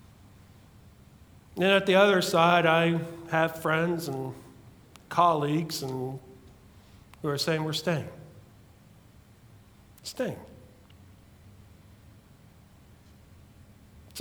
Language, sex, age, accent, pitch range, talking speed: English, male, 40-59, American, 110-170 Hz, 75 wpm